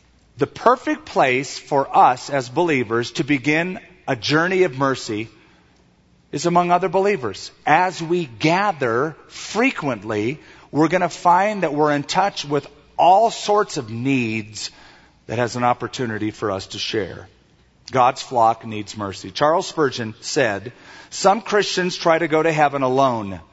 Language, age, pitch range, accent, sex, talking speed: English, 40-59, 125-175 Hz, American, male, 145 wpm